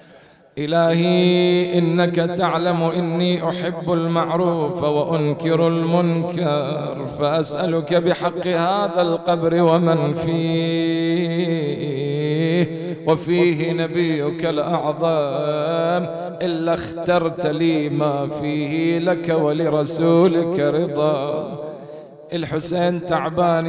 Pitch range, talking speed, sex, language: 165-175 Hz, 70 wpm, male, English